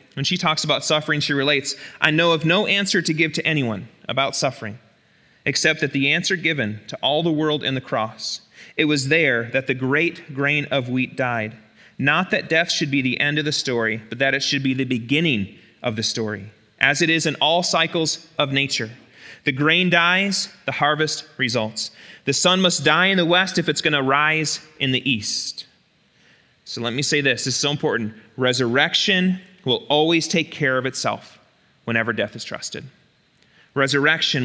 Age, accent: 30-49, American